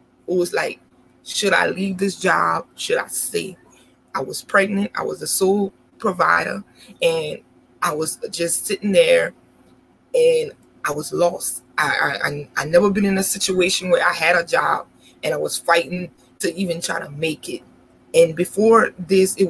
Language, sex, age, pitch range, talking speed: English, female, 20-39, 170-205 Hz, 175 wpm